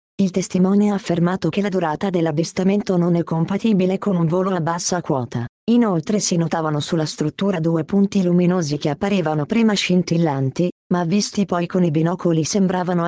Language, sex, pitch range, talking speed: Italian, female, 160-195 Hz, 165 wpm